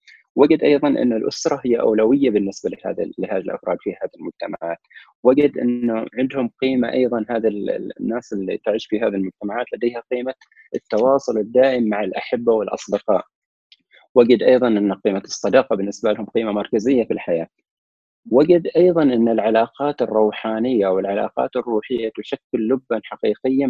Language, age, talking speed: Arabic, 30-49, 130 wpm